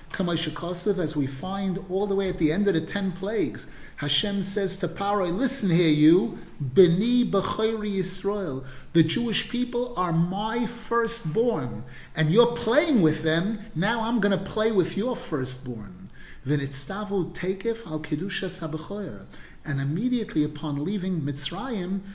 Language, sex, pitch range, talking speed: English, male, 155-205 Hz, 125 wpm